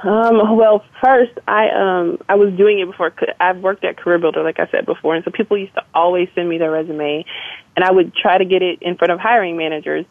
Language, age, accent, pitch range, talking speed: English, 20-39, American, 170-210 Hz, 245 wpm